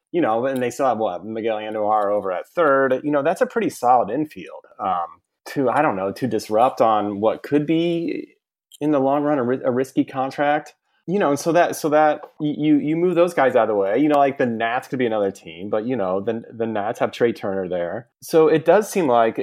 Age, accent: 30-49, American